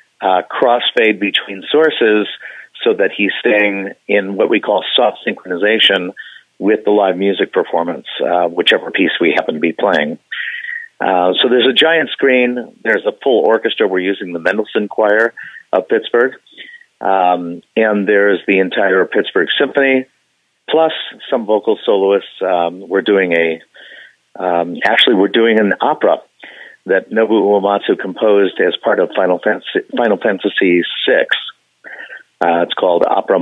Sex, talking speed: male, 145 wpm